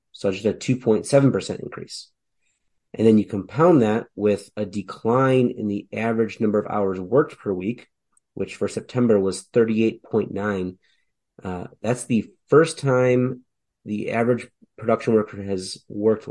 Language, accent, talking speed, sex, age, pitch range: English, American, 135 wpm, male, 30-49, 100-115 Hz